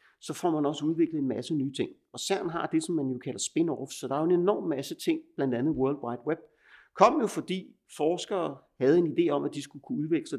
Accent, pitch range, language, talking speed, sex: native, 130-175 Hz, Danish, 255 wpm, male